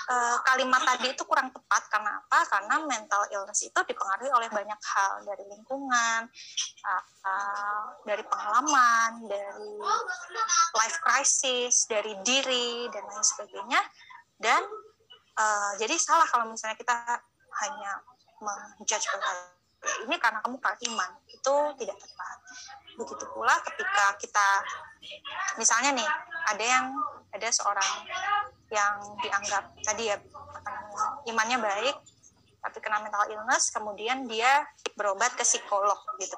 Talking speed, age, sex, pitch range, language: 120 wpm, 20-39, female, 215-310 Hz, Indonesian